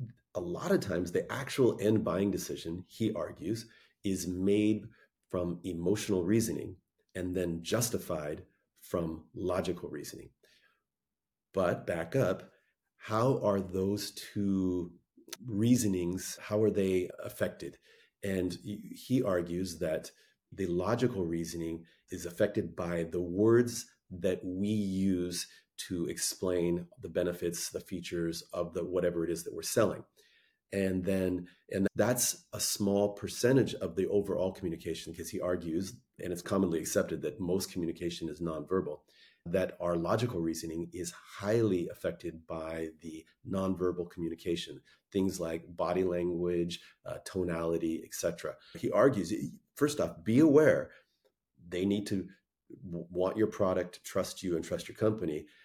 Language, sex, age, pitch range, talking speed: English, male, 40-59, 85-100 Hz, 130 wpm